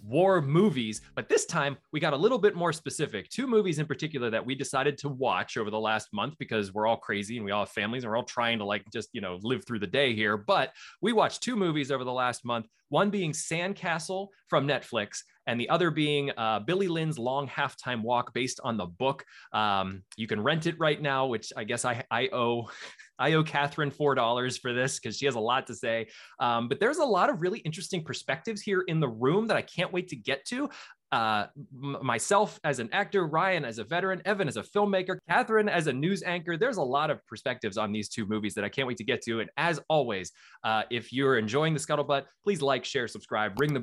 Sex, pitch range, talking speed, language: male, 115-160 Hz, 235 wpm, English